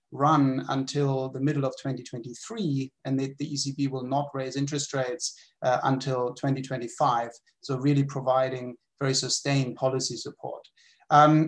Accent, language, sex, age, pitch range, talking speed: German, English, male, 30-49, 135-155 Hz, 135 wpm